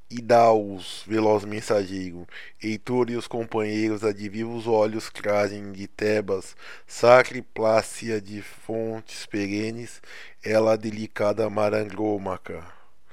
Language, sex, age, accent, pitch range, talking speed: Portuguese, male, 20-39, Brazilian, 105-115 Hz, 100 wpm